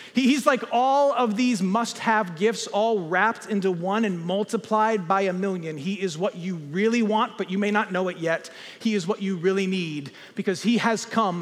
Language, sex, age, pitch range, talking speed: English, male, 40-59, 185-230 Hz, 205 wpm